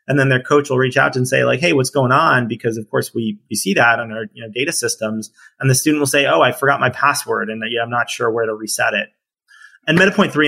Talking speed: 285 wpm